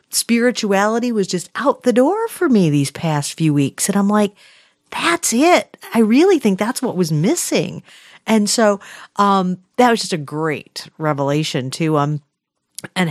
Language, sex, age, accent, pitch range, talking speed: English, female, 40-59, American, 165-230 Hz, 165 wpm